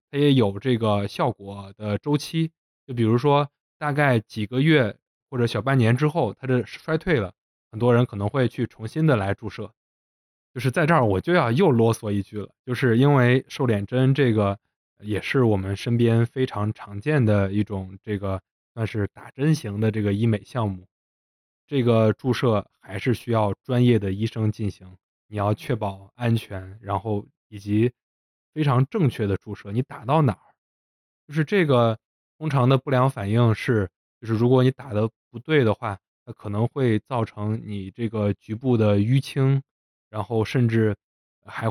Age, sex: 20-39, male